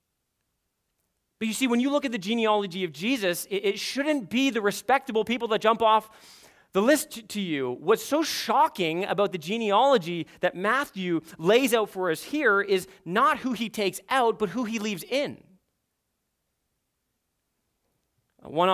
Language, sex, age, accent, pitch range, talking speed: English, male, 30-49, American, 170-225 Hz, 155 wpm